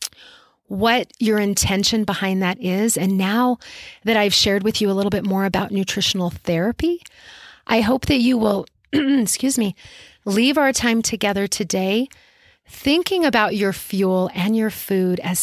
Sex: female